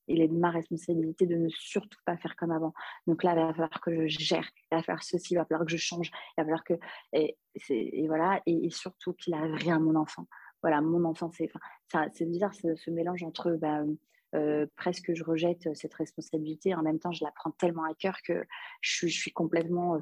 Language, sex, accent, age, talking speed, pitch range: French, female, French, 30-49, 235 wpm, 160-185 Hz